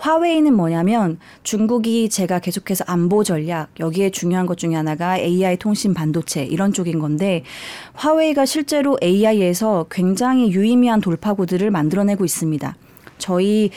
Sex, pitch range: female, 175-235 Hz